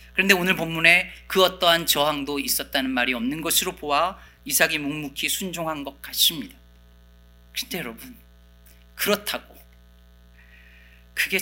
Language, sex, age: Korean, male, 40-59